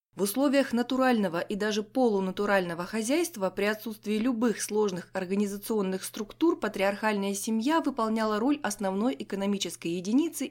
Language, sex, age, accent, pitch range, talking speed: Russian, female, 20-39, native, 195-250 Hz, 115 wpm